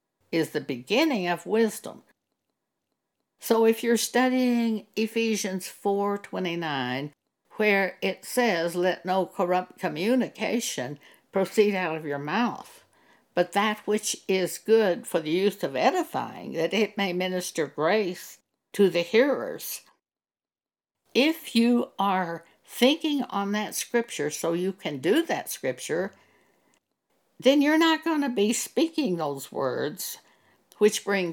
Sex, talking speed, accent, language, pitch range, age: female, 125 wpm, American, English, 170-235 Hz, 60-79